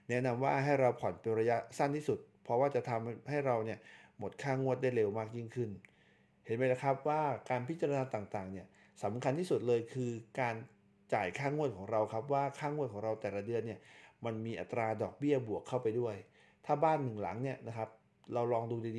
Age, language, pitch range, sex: 60-79, Thai, 110-135 Hz, male